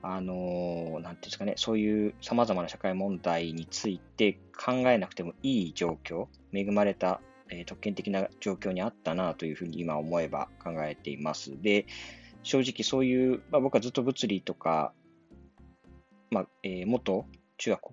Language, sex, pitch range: Japanese, male, 85-135 Hz